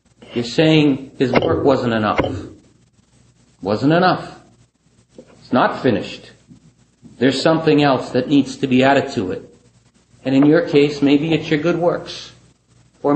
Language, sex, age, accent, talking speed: English, male, 40-59, American, 140 wpm